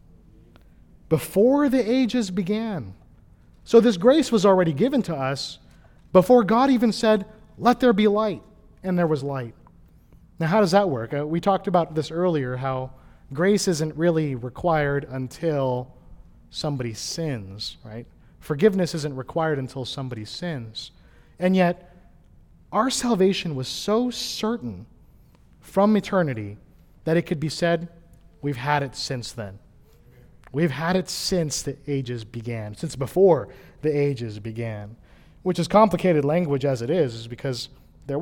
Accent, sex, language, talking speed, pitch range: American, male, English, 140 wpm, 130-185 Hz